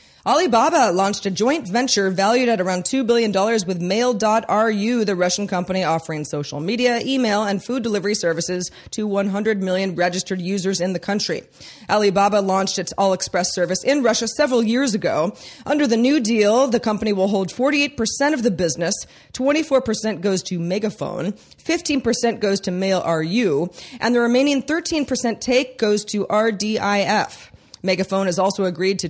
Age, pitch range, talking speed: 30-49, 185-235 Hz, 155 wpm